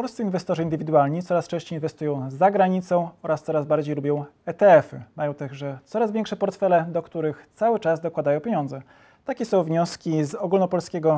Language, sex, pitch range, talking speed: Polish, male, 155-190 Hz, 155 wpm